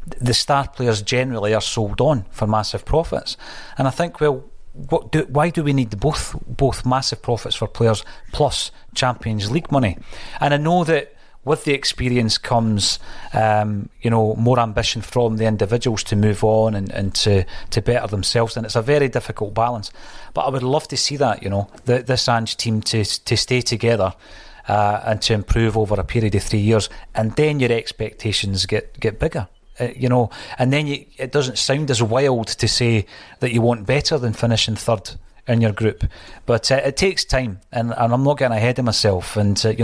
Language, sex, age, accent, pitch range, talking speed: English, male, 30-49, British, 110-130 Hz, 200 wpm